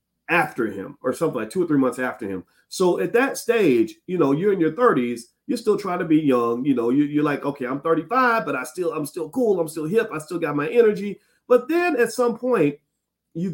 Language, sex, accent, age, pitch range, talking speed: English, male, American, 40-59, 160-265 Hz, 240 wpm